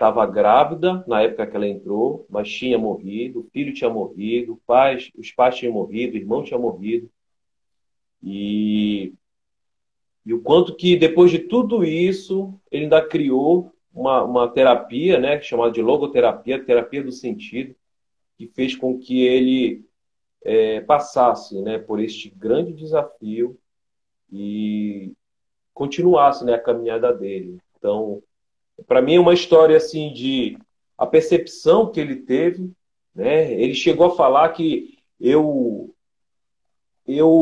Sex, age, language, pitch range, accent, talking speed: male, 40-59, Portuguese, 115-170 Hz, Brazilian, 135 wpm